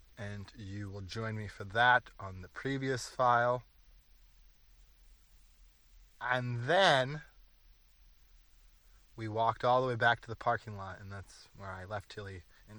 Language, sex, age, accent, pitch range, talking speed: English, male, 20-39, American, 90-120 Hz, 140 wpm